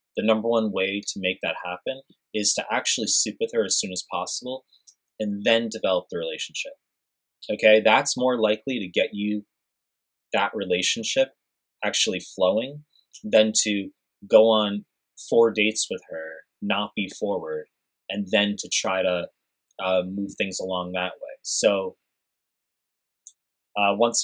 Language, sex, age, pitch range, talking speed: English, male, 20-39, 90-115 Hz, 145 wpm